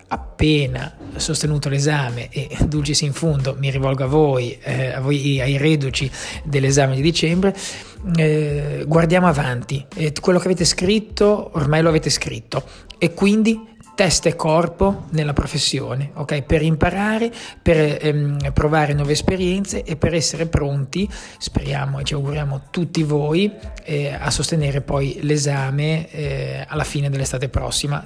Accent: native